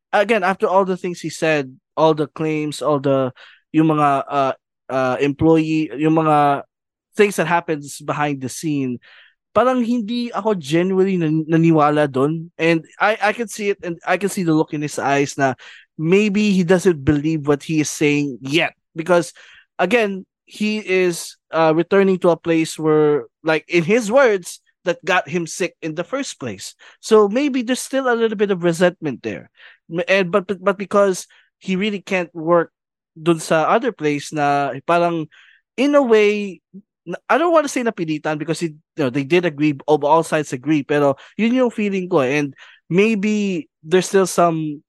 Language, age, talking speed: English, 20-39, 180 wpm